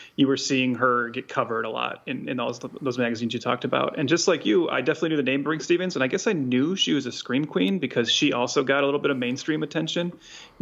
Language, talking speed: English, 270 wpm